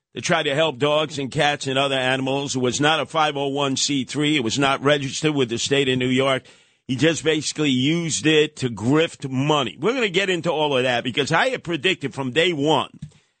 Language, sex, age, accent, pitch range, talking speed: English, male, 50-69, American, 130-165 Hz, 215 wpm